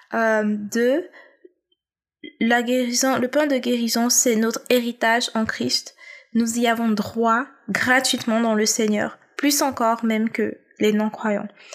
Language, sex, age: French, female, 20-39